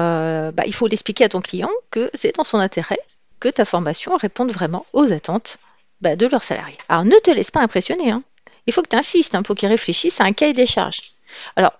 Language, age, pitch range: French, 40-59, 205-290 Hz